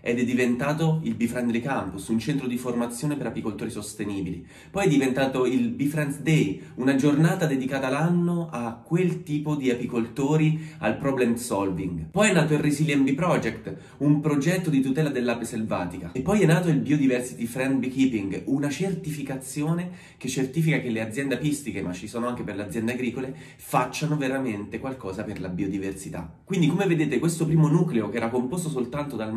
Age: 30-49